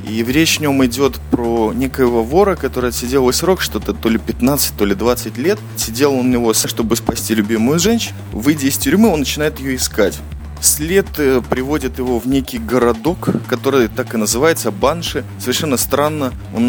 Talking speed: 175 wpm